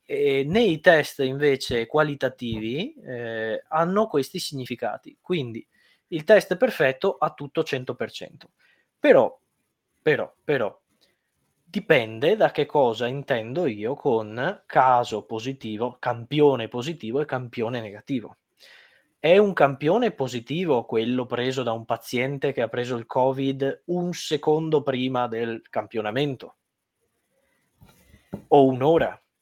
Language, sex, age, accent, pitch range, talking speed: Italian, male, 20-39, native, 120-170 Hz, 105 wpm